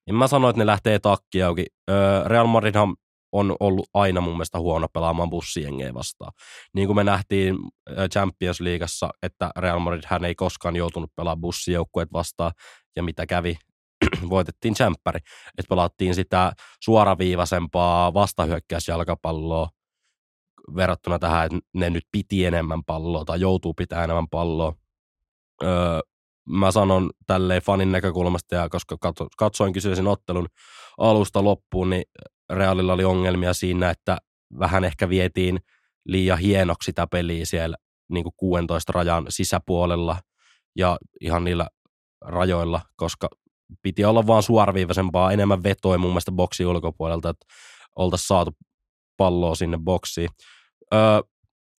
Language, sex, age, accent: Finnish, male, 20-39, native